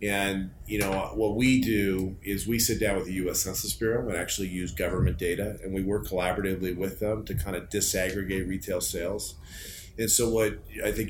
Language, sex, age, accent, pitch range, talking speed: English, male, 40-59, American, 90-105 Hz, 200 wpm